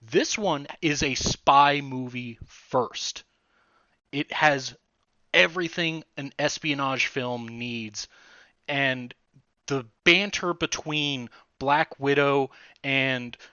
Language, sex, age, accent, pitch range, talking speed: English, male, 30-49, American, 130-175 Hz, 95 wpm